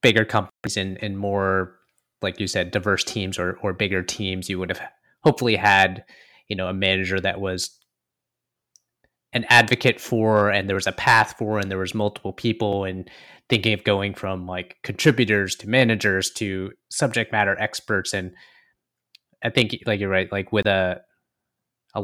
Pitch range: 95-110 Hz